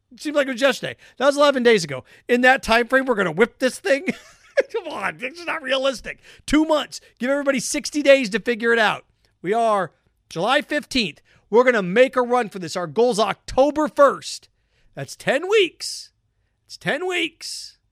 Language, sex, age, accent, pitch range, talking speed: English, male, 40-59, American, 180-270 Hz, 200 wpm